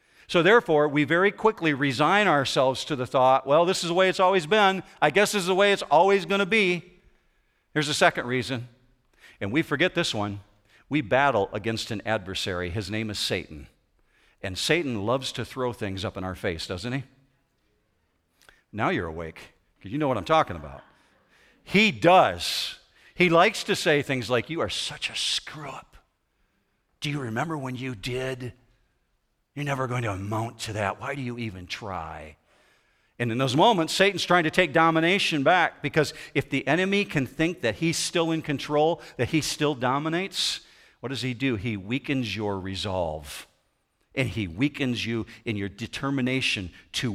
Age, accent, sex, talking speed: 50-69, American, male, 180 wpm